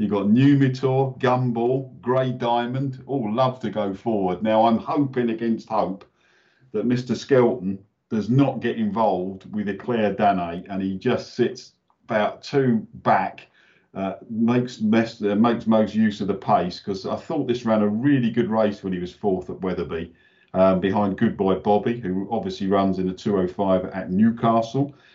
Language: English